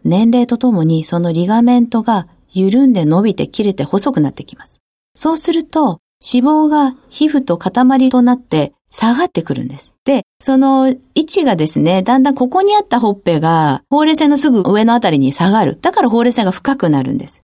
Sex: female